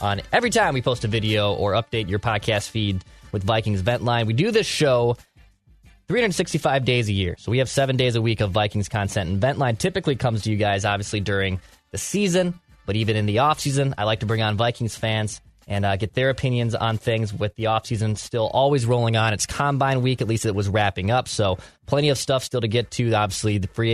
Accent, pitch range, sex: American, 100-125 Hz, male